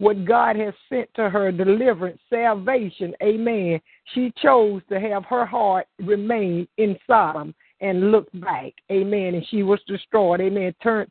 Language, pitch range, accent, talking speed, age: English, 190-220 Hz, American, 150 wpm, 50-69